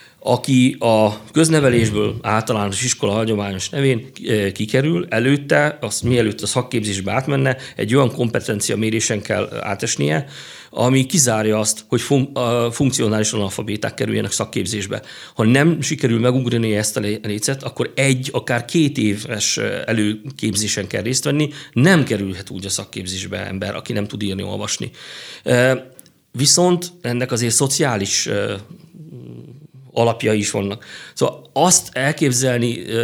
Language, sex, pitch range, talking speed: Hungarian, male, 110-135 Hz, 120 wpm